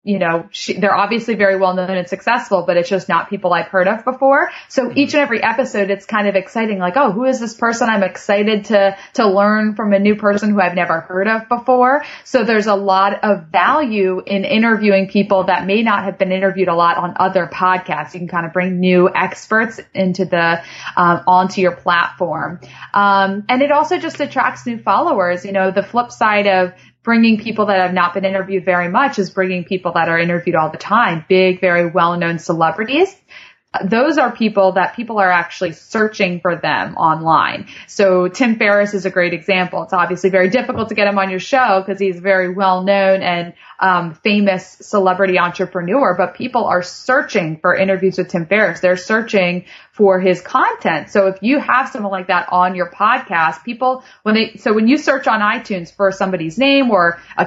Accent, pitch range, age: American, 180-220 Hz, 20-39